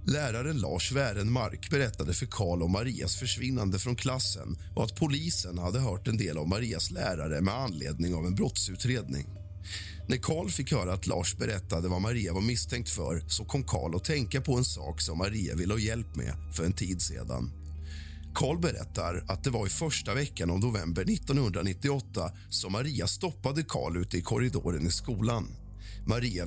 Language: Swedish